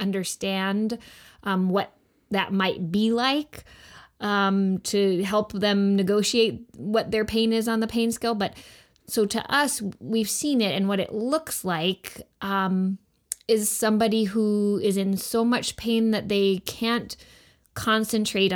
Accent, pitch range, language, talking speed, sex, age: American, 190-220 Hz, English, 145 wpm, female, 20-39